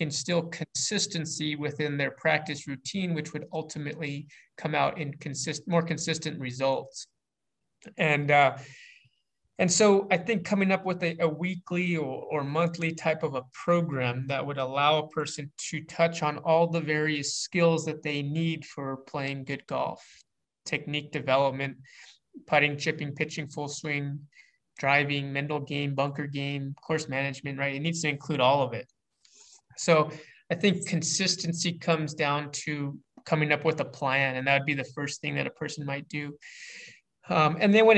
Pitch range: 145-170 Hz